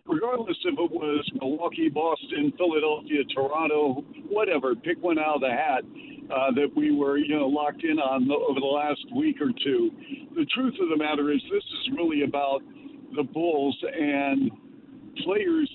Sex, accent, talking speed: male, American, 170 wpm